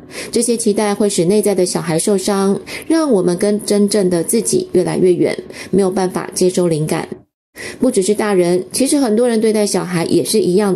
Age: 20-39